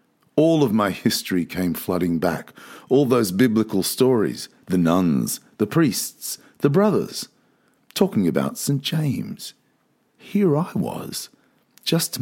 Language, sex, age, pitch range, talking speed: English, male, 50-69, 105-165 Hz, 125 wpm